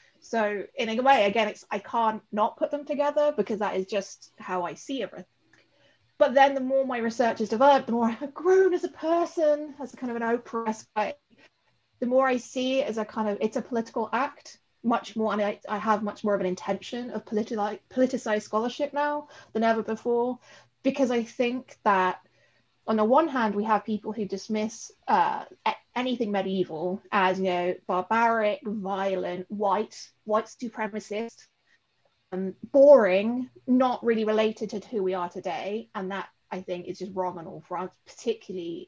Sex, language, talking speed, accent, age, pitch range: female, English, 180 wpm, British, 30-49, 205-275 Hz